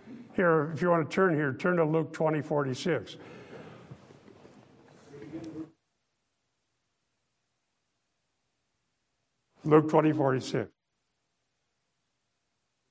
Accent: American